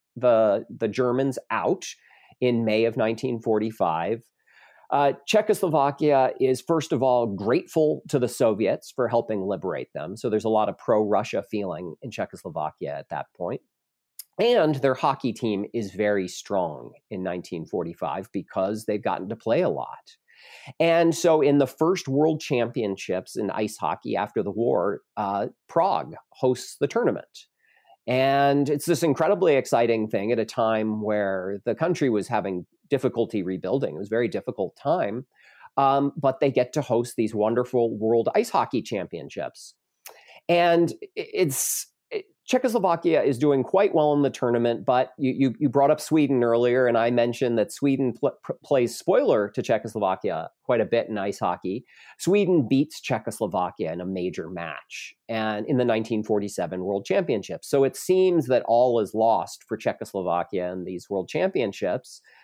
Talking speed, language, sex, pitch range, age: 160 wpm, English, male, 115-150 Hz, 40-59